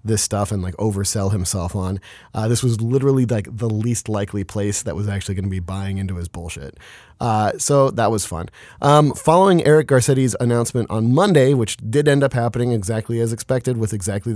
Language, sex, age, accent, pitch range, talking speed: English, male, 30-49, American, 110-135 Hz, 200 wpm